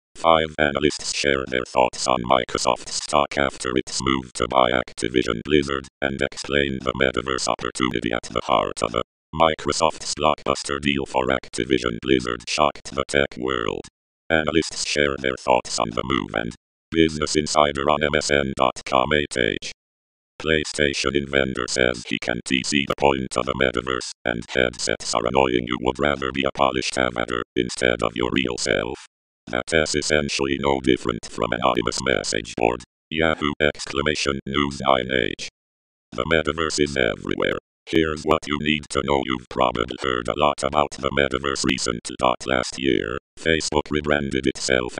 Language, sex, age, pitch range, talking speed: English, male, 50-69, 65-75 Hz, 150 wpm